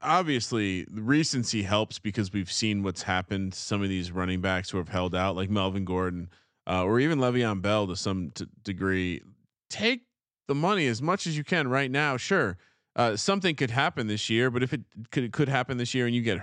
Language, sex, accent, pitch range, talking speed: English, male, American, 100-135 Hz, 215 wpm